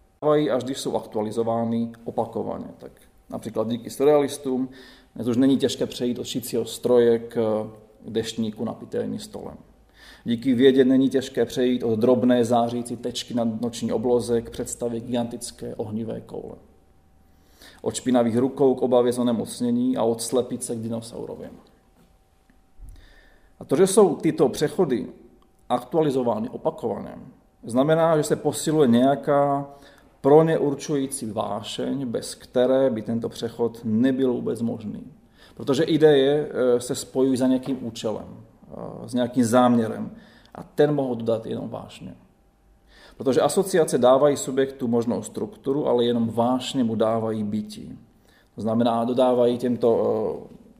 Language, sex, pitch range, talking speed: Czech, male, 115-135 Hz, 125 wpm